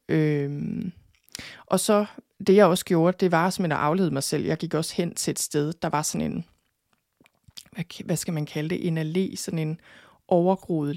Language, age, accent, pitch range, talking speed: Danish, 20-39, native, 160-200 Hz, 190 wpm